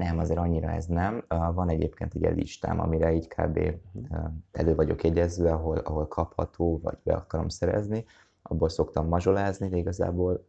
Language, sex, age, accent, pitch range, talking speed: English, male, 20-39, Finnish, 80-90 Hz, 155 wpm